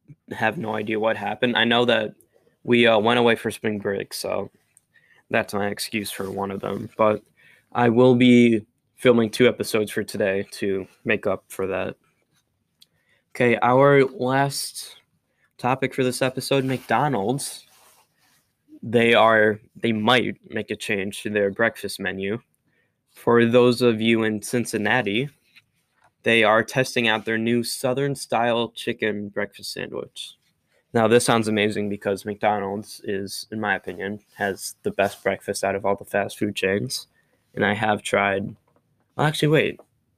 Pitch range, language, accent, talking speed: 105-125 Hz, English, American, 150 wpm